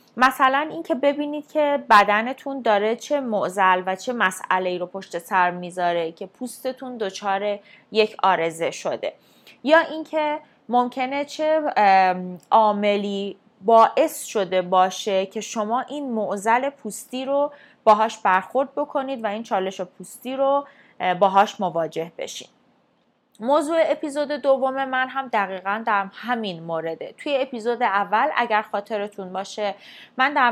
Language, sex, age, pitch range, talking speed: Persian, female, 20-39, 195-260 Hz, 125 wpm